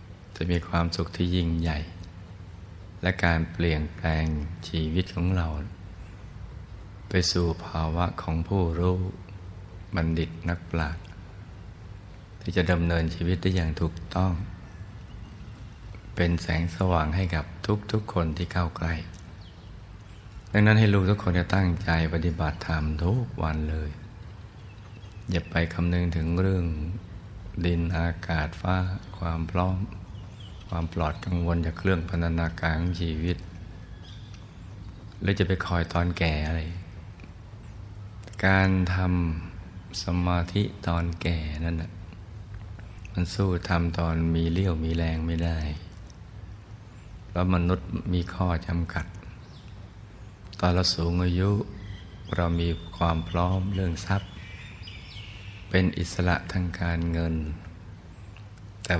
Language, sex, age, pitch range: Thai, male, 60-79, 85-100 Hz